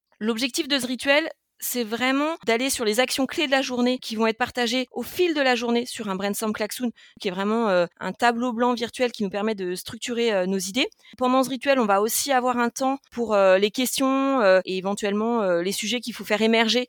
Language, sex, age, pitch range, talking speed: French, female, 30-49, 210-255 Hz, 235 wpm